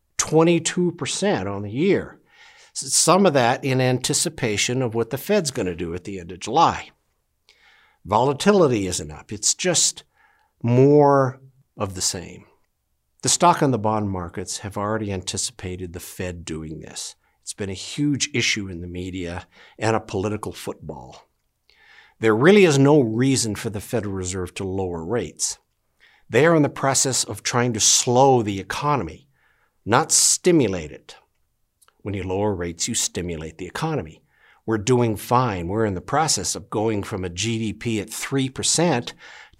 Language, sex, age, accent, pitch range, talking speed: English, male, 60-79, American, 95-140 Hz, 155 wpm